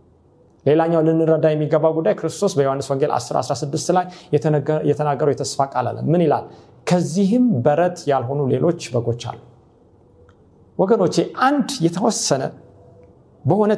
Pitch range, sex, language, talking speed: 120-175 Hz, male, Amharic, 95 wpm